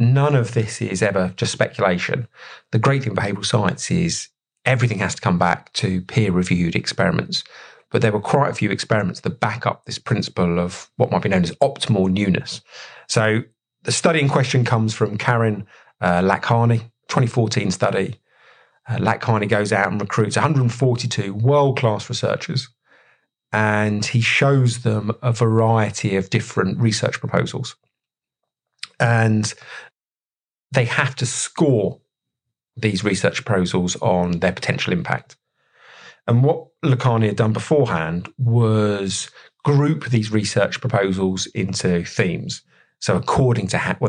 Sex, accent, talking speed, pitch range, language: male, British, 140 wpm, 100-130 Hz, English